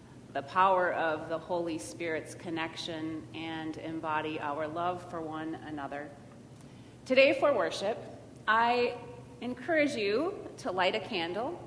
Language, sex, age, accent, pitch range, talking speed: English, female, 30-49, American, 155-220 Hz, 125 wpm